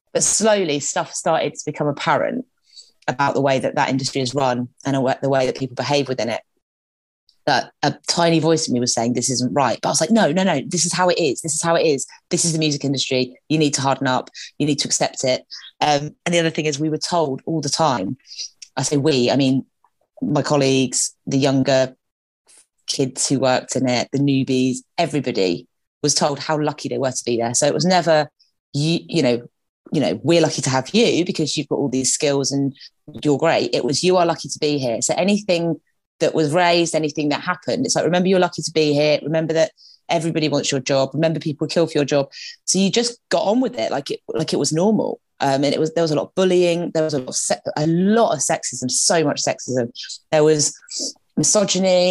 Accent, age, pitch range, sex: British, 30-49, 135-170 Hz, female